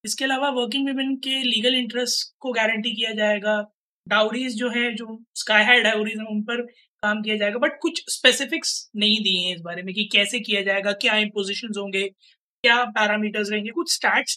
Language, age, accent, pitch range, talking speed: Hindi, 20-39, native, 215-265 Hz, 185 wpm